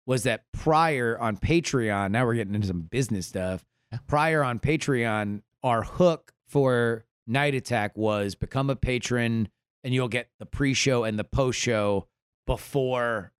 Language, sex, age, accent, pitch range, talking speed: English, male, 30-49, American, 110-130 Hz, 150 wpm